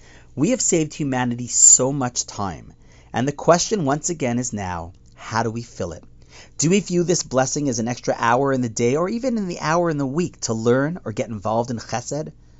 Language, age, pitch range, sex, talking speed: English, 40-59, 100-150 Hz, male, 220 wpm